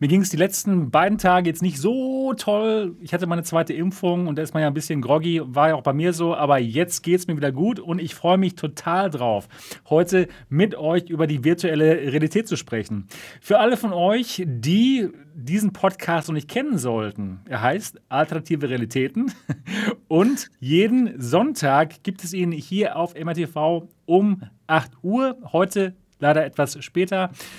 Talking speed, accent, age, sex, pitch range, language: 180 wpm, German, 30-49, male, 150-190 Hz, German